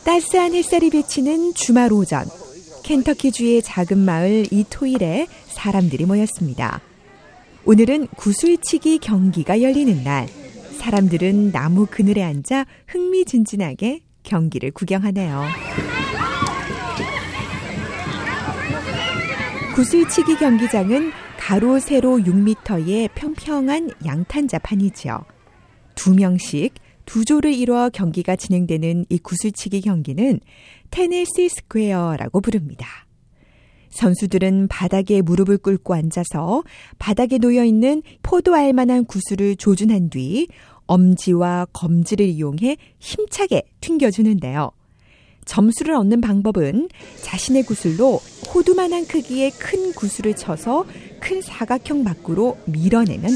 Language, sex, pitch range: Korean, female, 185-275 Hz